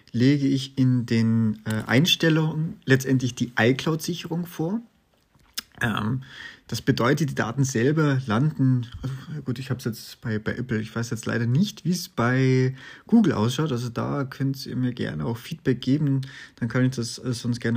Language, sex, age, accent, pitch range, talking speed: German, male, 30-49, German, 115-145 Hz, 170 wpm